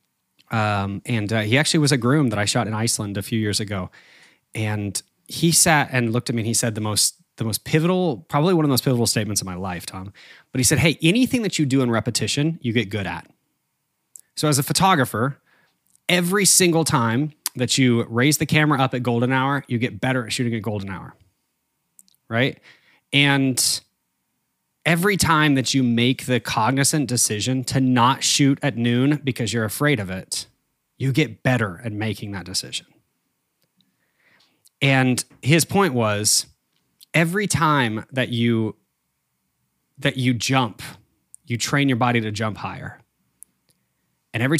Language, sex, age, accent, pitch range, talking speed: English, male, 20-39, American, 110-140 Hz, 170 wpm